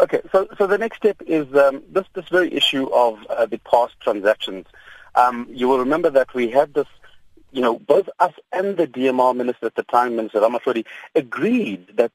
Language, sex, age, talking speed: English, male, 40-59, 200 wpm